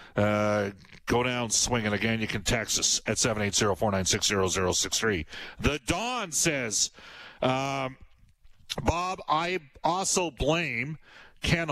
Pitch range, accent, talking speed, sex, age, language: 105-140 Hz, American, 100 wpm, male, 40-59, English